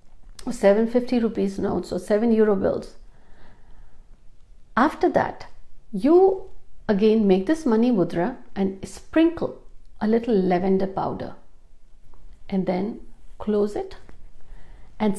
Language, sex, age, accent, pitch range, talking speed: Hindi, female, 60-79, native, 190-245 Hz, 105 wpm